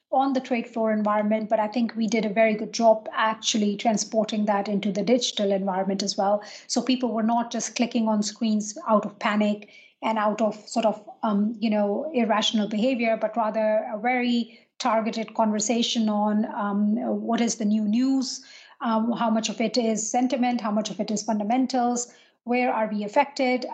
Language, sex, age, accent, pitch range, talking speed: English, female, 30-49, Indian, 210-235 Hz, 185 wpm